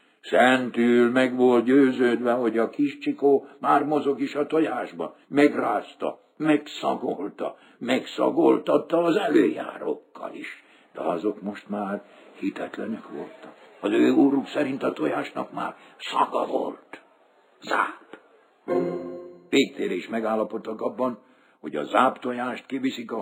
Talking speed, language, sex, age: 115 wpm, Hungarian, male, 60-79